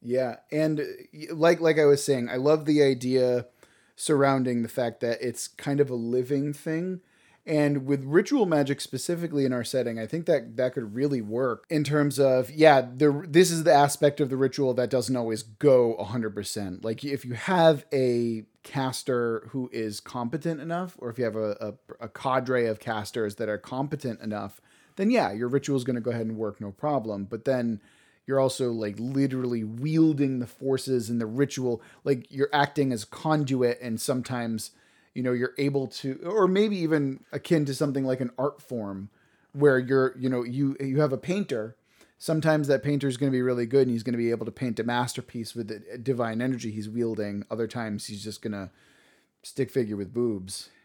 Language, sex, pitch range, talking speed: English, male, 115-145 Hz, 200 wpm